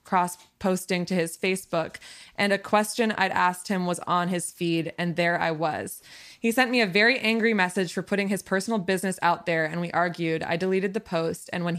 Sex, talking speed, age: female, 215 wpm, 20-39